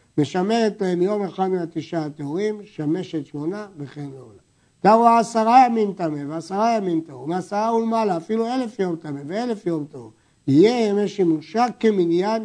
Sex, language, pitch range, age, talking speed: male, Hebrew, 150-200 Hz, 60-79, 145 wpm